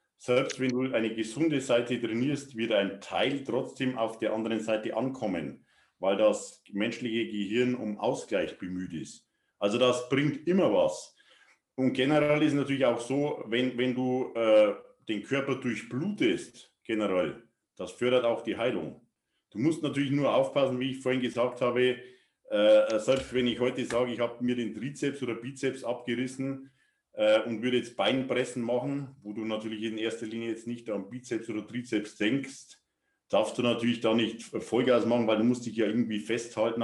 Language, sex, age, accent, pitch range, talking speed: English, male, 50-69, German, 110-130 Hz, 170 wpm